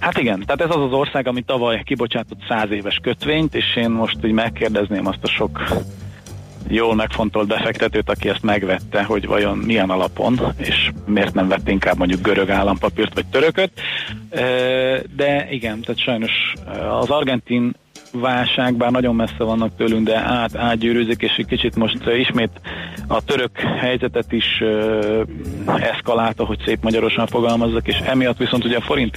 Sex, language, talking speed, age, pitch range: male, Hungarian, 155 wpm, 40-59, 100-120 Hz